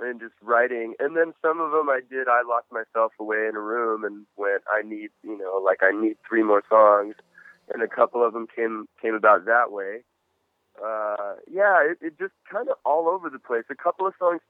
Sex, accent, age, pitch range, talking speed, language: male, American, 20-39, 110-130 Hz, 225 wpm, English